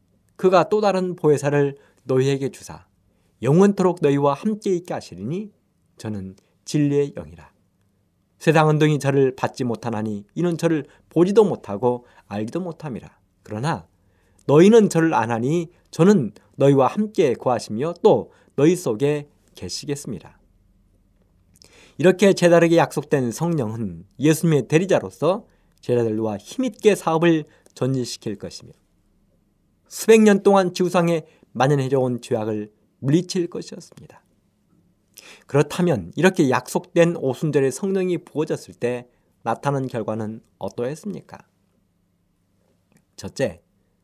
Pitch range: 115-175 Hz